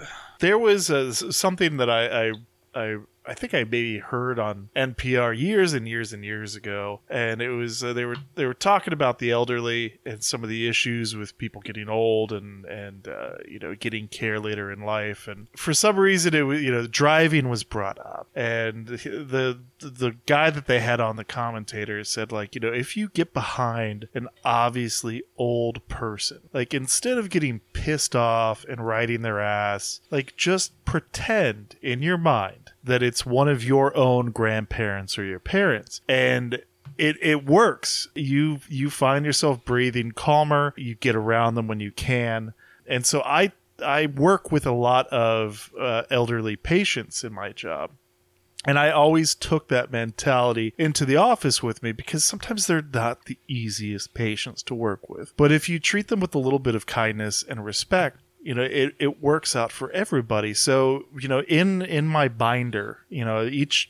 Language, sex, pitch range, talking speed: English, male, 110-140 Hz, 185 wpm